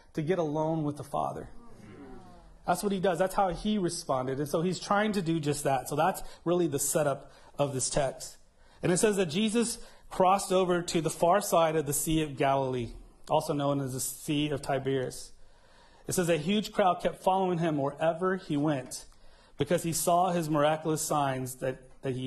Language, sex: English, male